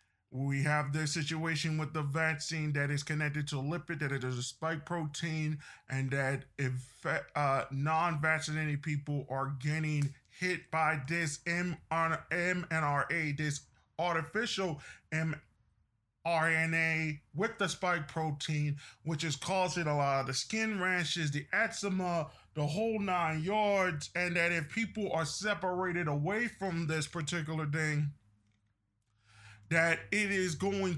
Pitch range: 145-180 Hz